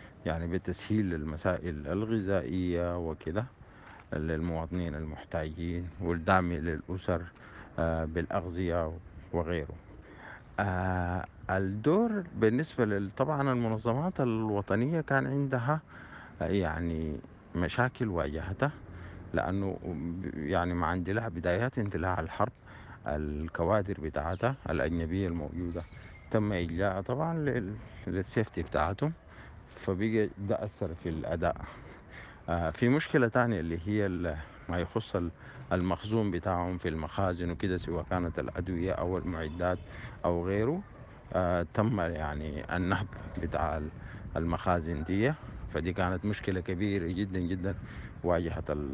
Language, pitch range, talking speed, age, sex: English, 85-105 Hz, 95 wpm, 50-69, male